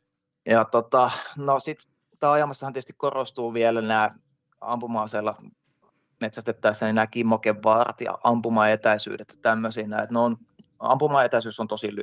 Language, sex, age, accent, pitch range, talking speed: Finnish, male, 20-39, native, 110-125 Hz, 90 wpm